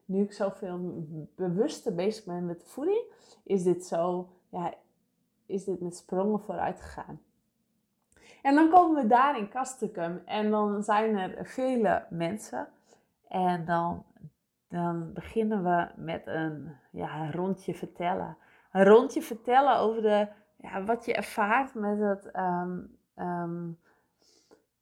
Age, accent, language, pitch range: 20-39, Dutch, English, 180-225 Hz